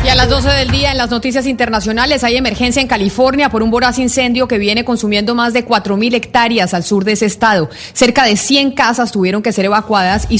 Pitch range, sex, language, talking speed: 235-285 Hz, female, Spanish, 225 wpm